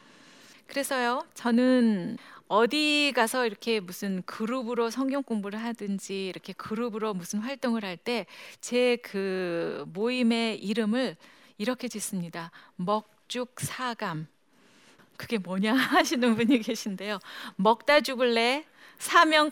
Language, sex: Korean, female